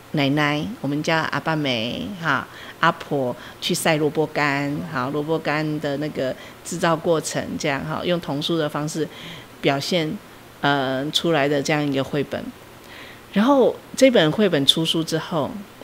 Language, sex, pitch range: Chinese, female, 145-190 Hz